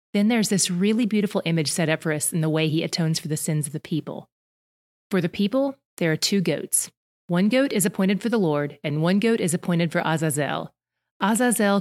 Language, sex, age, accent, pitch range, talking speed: English, female, 30-49, American, 165-205 Hz, 220 wpm